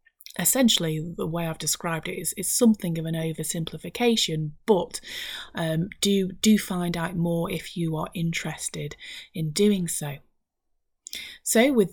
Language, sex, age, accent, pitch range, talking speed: English, female, 30-49, British, 165-210 Hz, 140 wpm